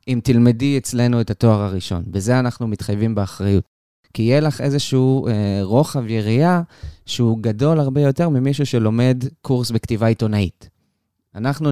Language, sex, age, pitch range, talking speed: Hebrew, male, 20-39, 105-135 Hz, 140 wpm